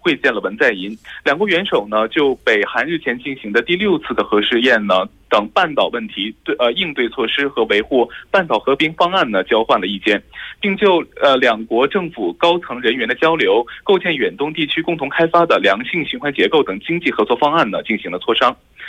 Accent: Chinese